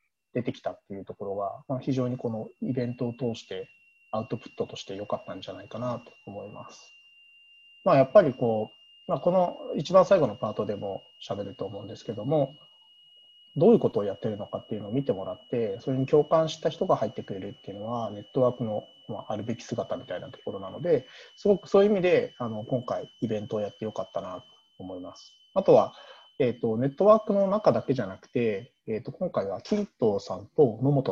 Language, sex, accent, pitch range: Japanese, male, native, 115-175 Hz